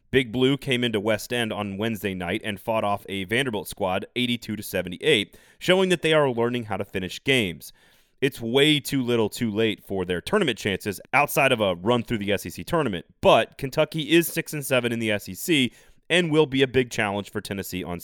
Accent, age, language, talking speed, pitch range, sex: American, 30-49, English, 205 wpm, 105-140 Hz, male